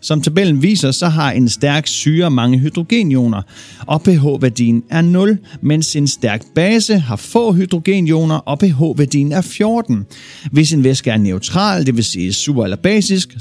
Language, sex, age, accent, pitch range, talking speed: Danish, male, 40-59, native, 120-180 Hz, 155 wpm